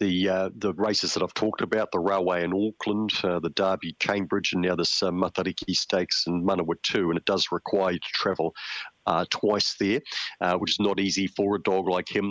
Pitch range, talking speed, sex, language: 95-105 Hz, 215 wpm, male, English